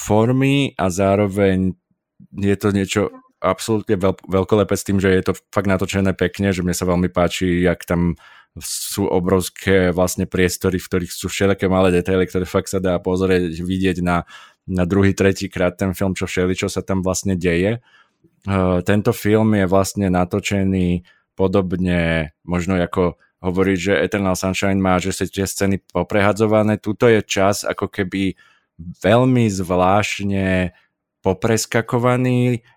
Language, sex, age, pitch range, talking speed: Slovak, male, 20-39, 90-100 Hz, 145 wpm